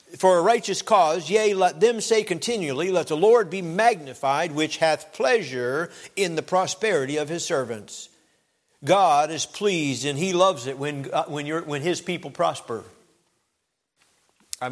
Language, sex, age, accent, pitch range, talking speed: English, male, 60-79, American, 125-165 Hz, 160 wpm